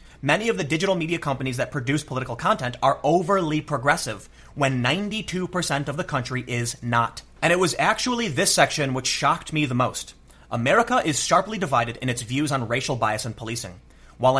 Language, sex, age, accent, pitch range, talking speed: English, male, 30-49, American, 125-160 Hz, 185 wpm